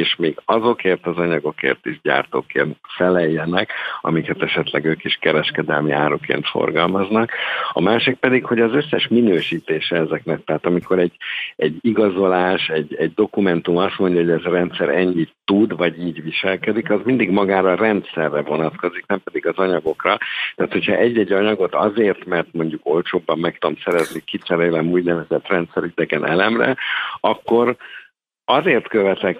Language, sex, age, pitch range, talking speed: Hungarian, male, 60-79, 85-105 Hz, 140 wpm